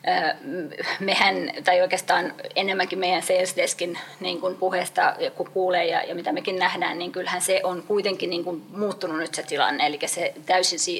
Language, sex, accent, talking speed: Finnish, female, native, 135 wpm